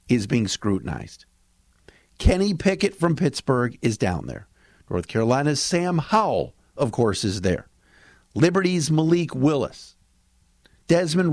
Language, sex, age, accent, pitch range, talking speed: English, male, 50-69, American, 100-155 Hz, 115 wpm